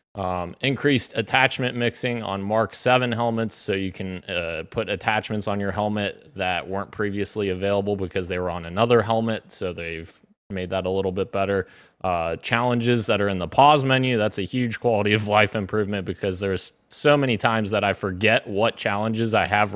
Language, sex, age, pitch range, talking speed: English, male, 20-39, 95-115 Hz, 190 wpm